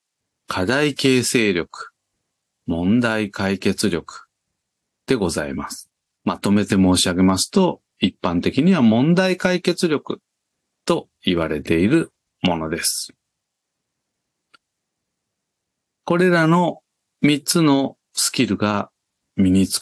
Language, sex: Japanese, male